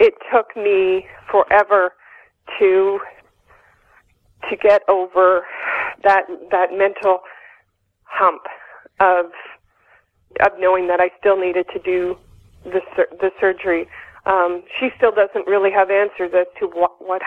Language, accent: English, American